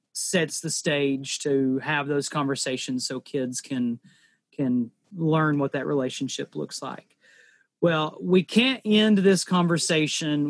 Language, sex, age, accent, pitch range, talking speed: English, male, 30-49, American, 140-175 Hz, 130 wpm